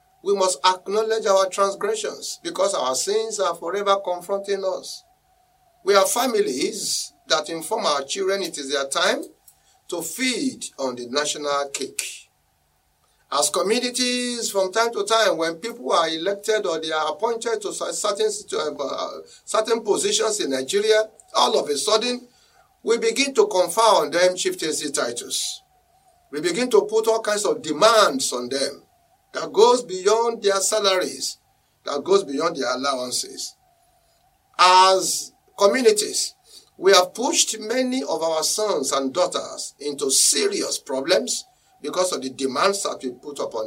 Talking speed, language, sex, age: 140 wpm, English, male, 50-69